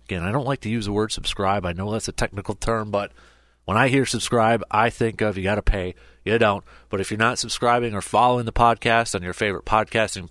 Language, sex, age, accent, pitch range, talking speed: English, male, 30-49, American, 85-120 Hz, 245 wpm